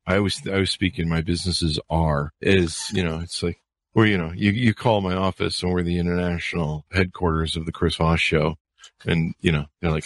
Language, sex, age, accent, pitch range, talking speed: English, male, 40-59, American, 85-100 Hz, 225 wpm